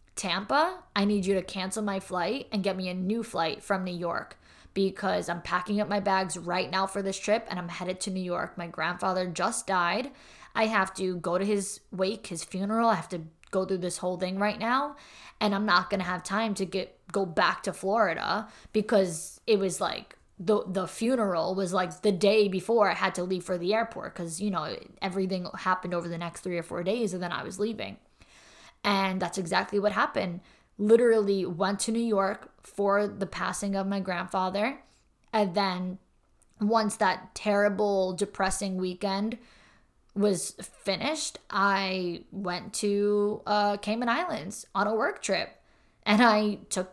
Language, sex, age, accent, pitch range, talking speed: English, female, 20-39, American, 185-215 Hz, 185 wpm